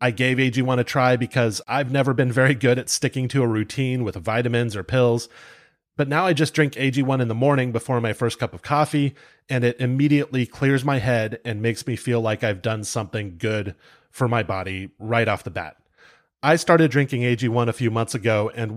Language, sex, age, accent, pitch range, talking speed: English, male, 30-49, American, 115-135 Hz, 210 wpm